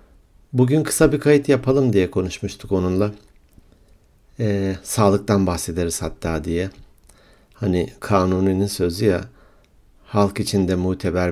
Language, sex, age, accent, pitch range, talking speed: Turkish, male, 60-79, native, 90-105 Hz, 105 wpm